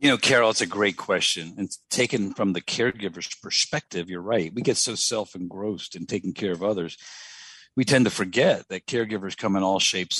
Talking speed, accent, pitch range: 200 wpm, American, 95-120 Hz